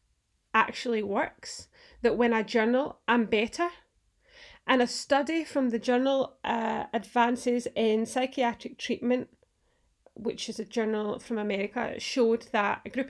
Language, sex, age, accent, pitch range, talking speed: English, female, 30-49, British, 225-275 Hz, 135 wpm